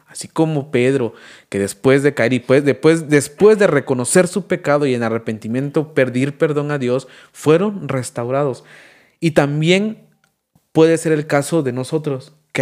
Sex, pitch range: male, 135-170 Hz